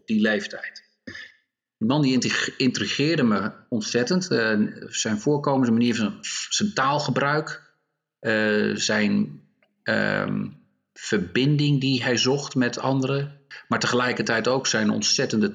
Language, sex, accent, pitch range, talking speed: English, male, Dutch, 100-135 Hz, 115 wpm